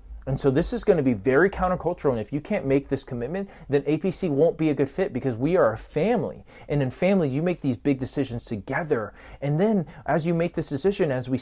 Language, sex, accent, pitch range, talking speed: English, male, American, 120-165 Hz, 240 wpm